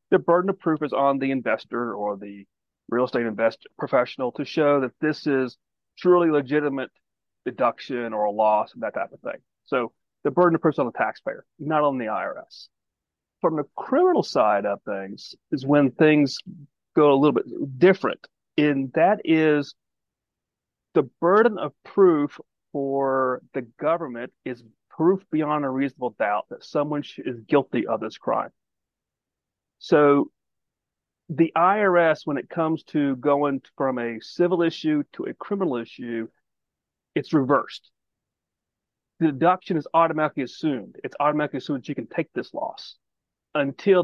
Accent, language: American, English